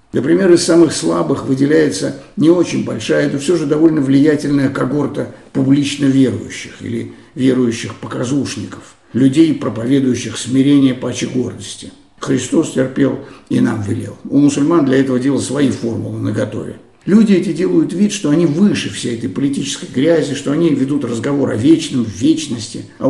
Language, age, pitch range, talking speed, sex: Russian, 60-79, 120-165 Hz, 150 wpm, male